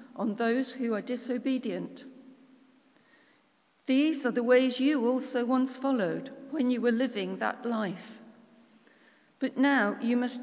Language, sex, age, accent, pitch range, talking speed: English, female, 50-69, British, 230-265 Hz, 130 wpm